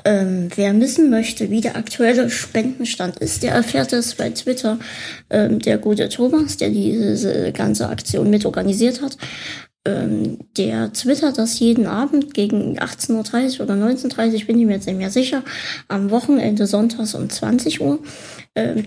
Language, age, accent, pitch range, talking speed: German, 20-39, German, 195-230 Hz, 165 wpm